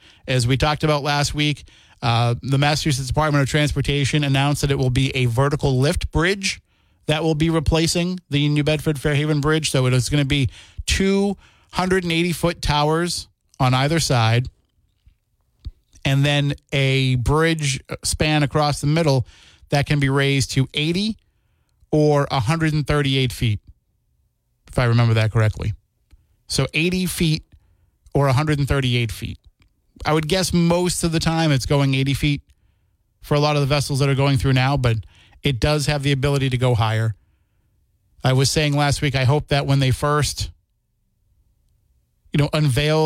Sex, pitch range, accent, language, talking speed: male, 115-150 Hz, American, English, 160 wpm